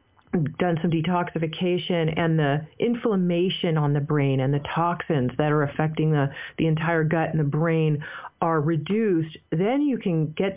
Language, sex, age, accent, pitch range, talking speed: English, female, 40-59, American, 155-190 Hz, 160 wpm